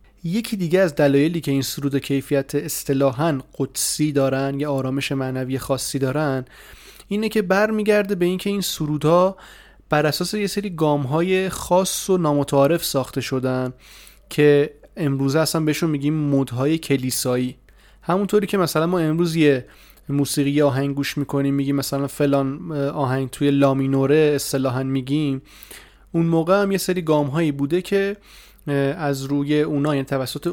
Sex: male